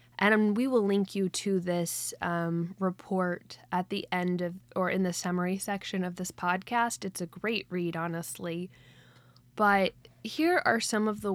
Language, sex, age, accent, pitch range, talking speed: English, female, 10-29, American, 170-195 Hz, 170 wpm